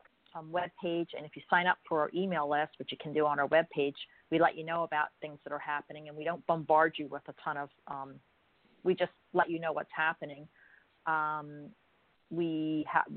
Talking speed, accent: 225 wpm, American